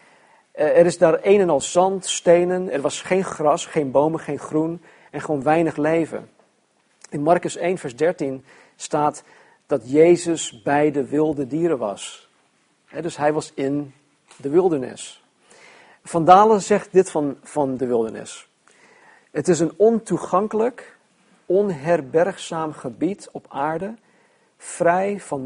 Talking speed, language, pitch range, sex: 135 wpm, Dutch, 140-175 Hz, male